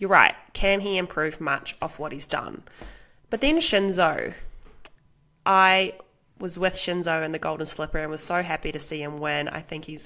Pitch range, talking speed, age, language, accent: 155-180 Hz, 190 wpm, 20-39, English, Australian